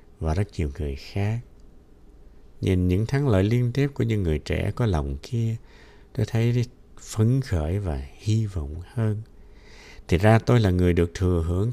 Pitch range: 85-120 Hz